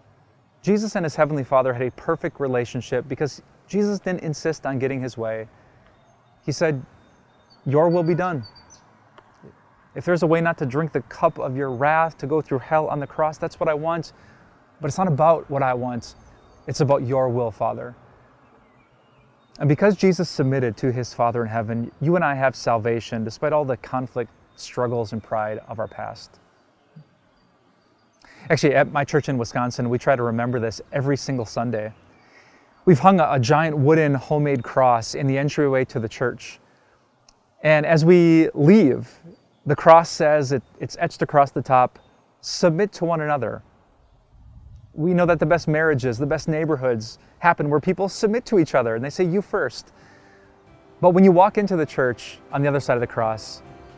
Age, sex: 20-39, male